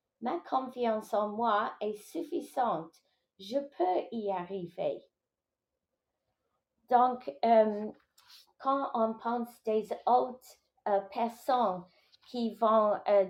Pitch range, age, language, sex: 205-245 Hz, 30-49, English, female